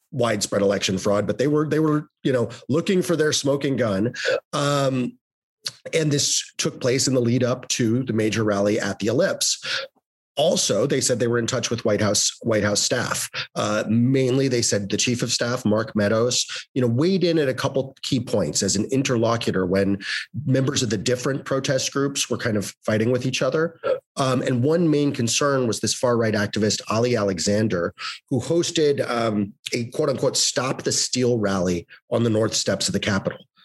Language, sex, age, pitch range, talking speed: English, male, 30-49, 105-130 Hz, 195 wpm